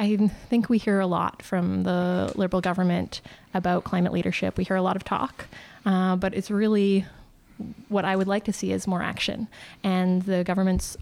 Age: 20-39